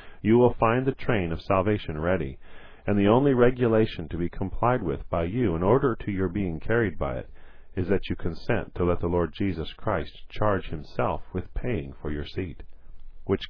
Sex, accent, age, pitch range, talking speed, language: male, American, 40-59, 80-110 Hz, 195 wpm, English